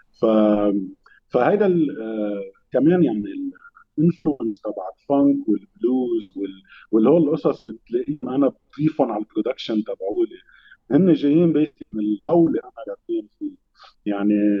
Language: Arabic